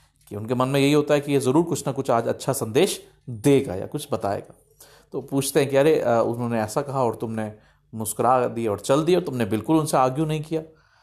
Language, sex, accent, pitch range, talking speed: Hindi, male, native, 115-145 Hz, 220 wpm